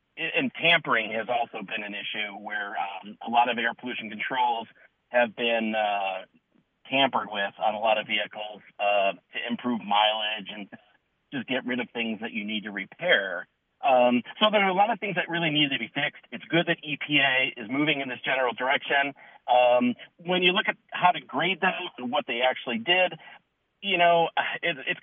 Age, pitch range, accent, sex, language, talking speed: 40-59, 115-165 Hz, American, male, English, 195 wpm